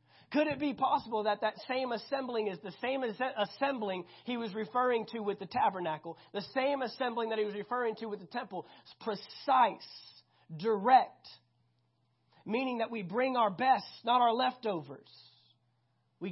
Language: English